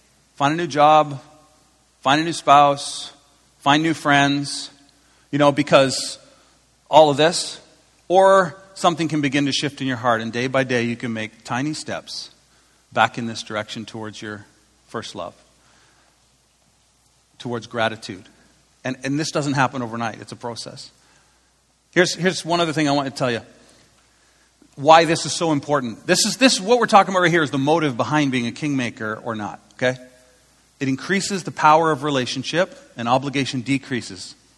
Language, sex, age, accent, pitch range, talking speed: English, male, 40-59, American, 130-160 Hz, 170 wpm